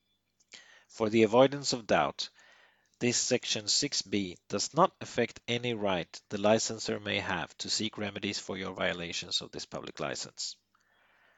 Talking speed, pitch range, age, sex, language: 140 wpm, 100-125 Hz, 40-59, male, English